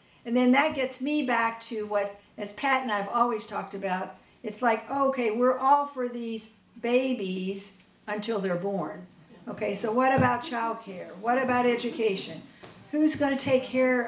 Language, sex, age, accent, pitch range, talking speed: English, female, 60-79, American, 200-245 Hz, 165 wpm